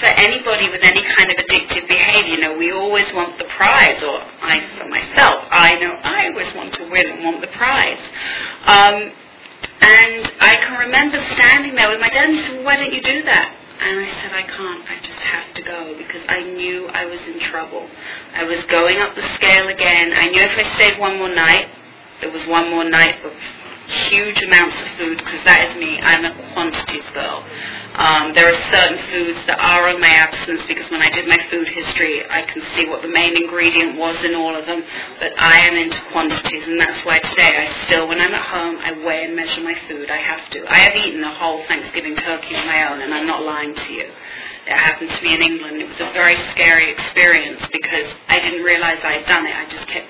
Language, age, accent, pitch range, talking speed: English, 30-49, British, 165-185 Hz, 230 wpm